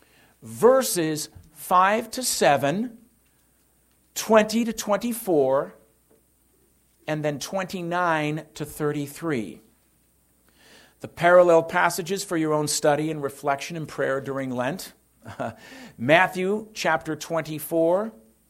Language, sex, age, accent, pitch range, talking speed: English, male, 50-69, American, 140-195 Hz, 90 wpm